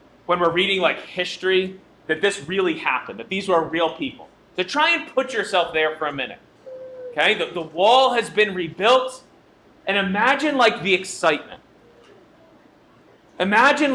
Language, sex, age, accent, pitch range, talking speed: English, male, 30-49, American, 190-260 Hz, 155 wpm